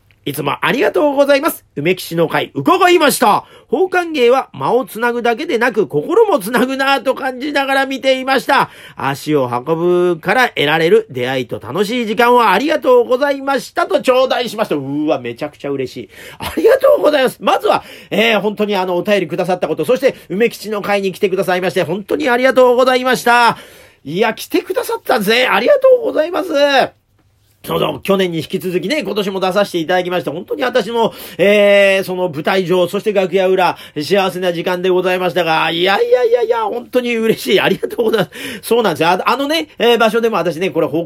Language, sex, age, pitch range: Japanese, male, 40-59, 175-250 Hz